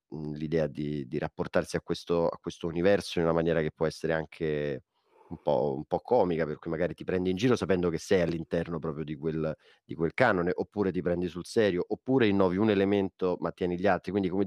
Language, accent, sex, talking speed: Italian, native, male, 220 wpm